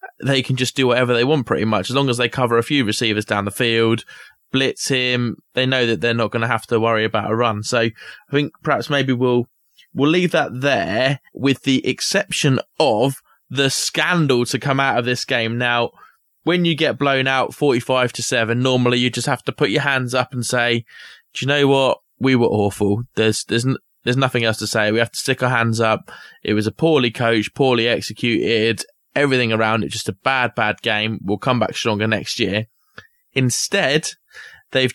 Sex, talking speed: male, 210 wpm